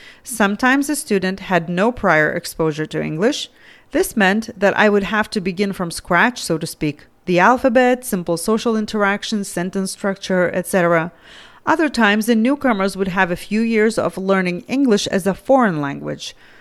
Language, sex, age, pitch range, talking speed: English, female, 30-49, 180-235 Hz, 165 wpm